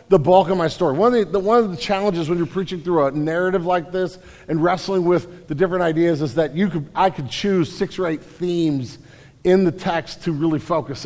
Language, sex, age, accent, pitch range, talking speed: English, male, 50-69, American, 145-190 Hz, 220 wpm